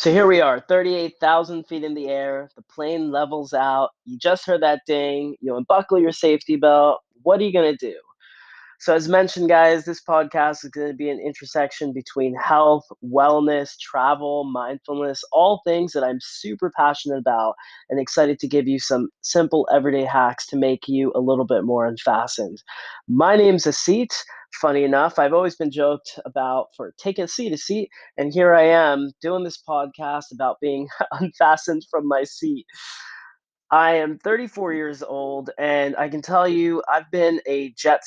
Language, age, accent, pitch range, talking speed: English, 20-39, American, 135-170 Hz, 180 wpm